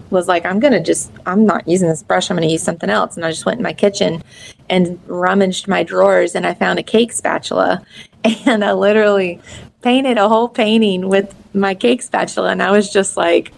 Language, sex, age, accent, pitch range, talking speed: English, female, 30-49, American, 165-195 Hz, 210 wpm